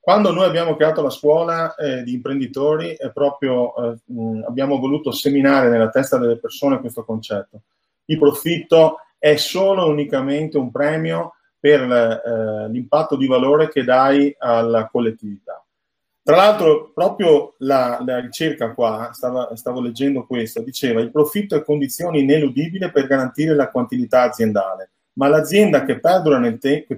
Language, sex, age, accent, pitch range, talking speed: Italian, male, 30-49, native, 125-155 Hz, 135 wpm